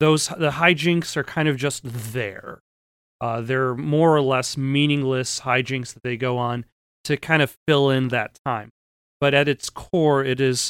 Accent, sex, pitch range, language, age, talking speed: American, male, 125-150 Hz, English, 30-49, 180 wpm